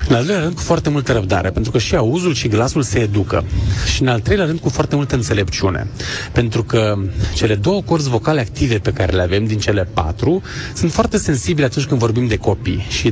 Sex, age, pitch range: male, 30-49, 110-145 Hz